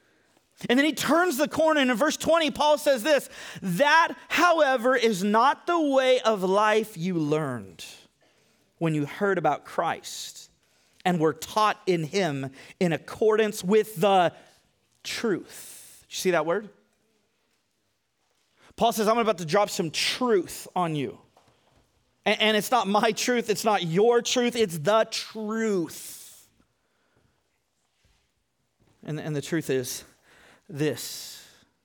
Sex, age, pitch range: male, 40-59, 185-255 Hz